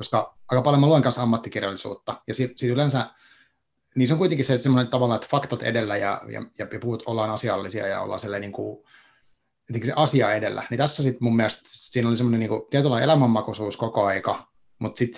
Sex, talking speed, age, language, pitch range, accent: male, 190 wpm, 30-49, Finnish, 110-135 Hz, native